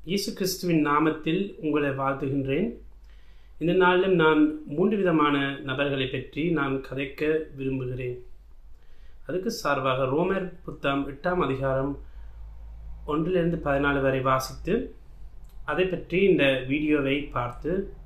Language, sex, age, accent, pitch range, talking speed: German, male, 30-49, Indian, 130-170 Hz, 110 wpm